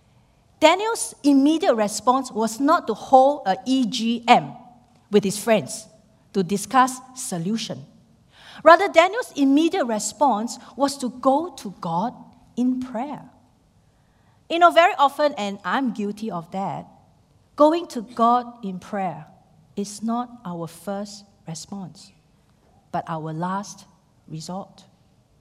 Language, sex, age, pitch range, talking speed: English, female, 50-69, 190-280 Hz, 115 wpm